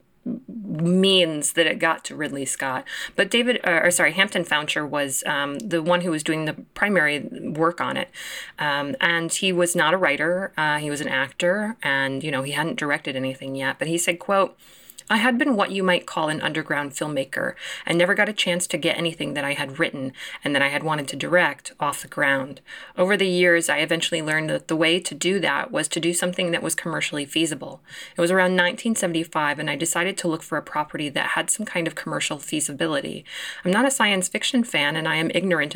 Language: English